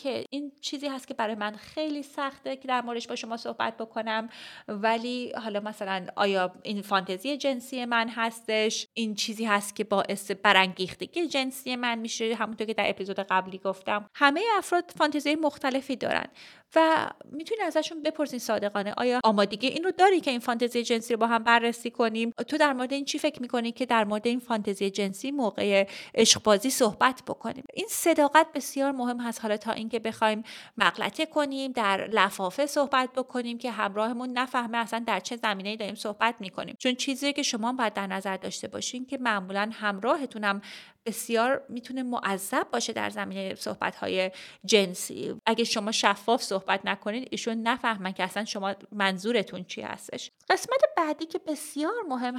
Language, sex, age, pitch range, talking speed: Persian, female, 30-49, 210-275 Hz, 165 wpm